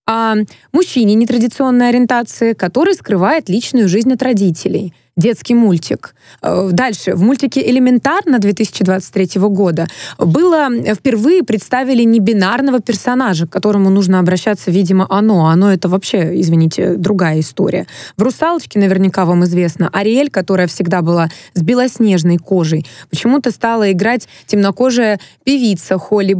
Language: Russian